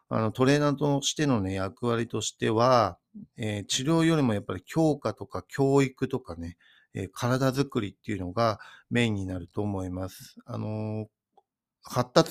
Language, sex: Japanese, male